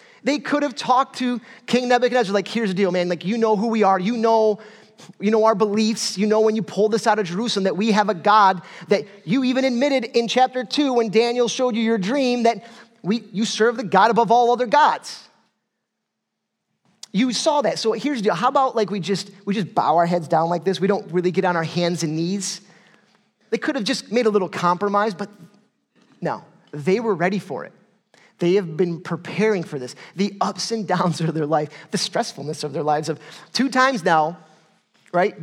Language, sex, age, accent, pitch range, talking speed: English, male, 30-49, American, 180-230 Hz, 215 wpm